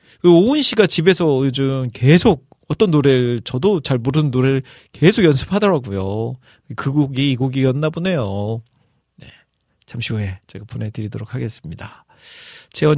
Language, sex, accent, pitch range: Korean, male, native, 120-170 Hz